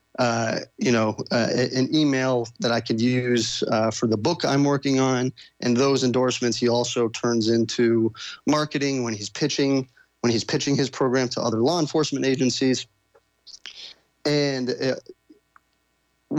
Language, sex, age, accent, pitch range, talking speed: English, male, 30-49, American, 115-140 Hz, 145 wpm